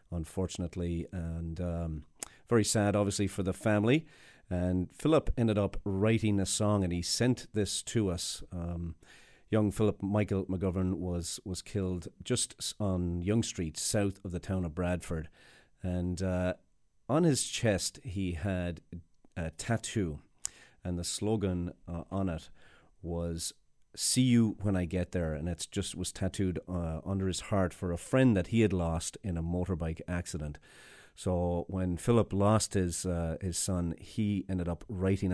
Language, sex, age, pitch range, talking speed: English, male, 40-59, 85-105 Hz, 160 wpm